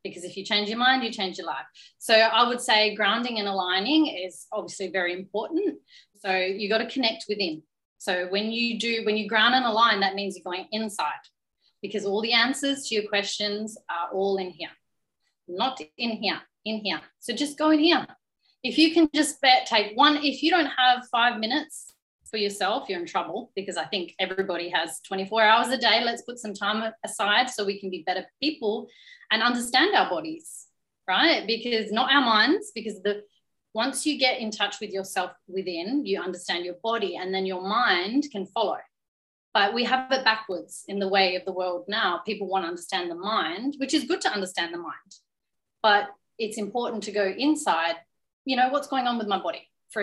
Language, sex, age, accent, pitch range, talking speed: English, female, 30-49, Australian, 195-255 Hz, 200 wpm